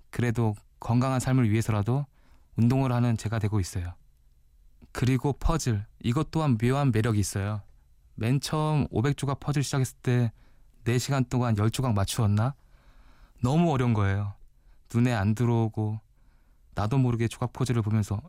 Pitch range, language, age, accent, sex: 110-135 Hz, Korean, 20-39, native, male